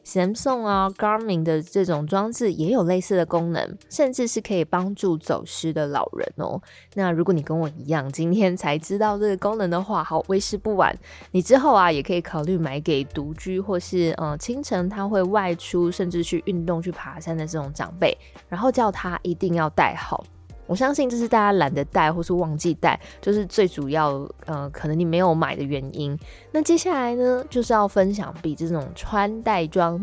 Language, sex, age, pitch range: Chinese, female, 20-39, 160-210 Hz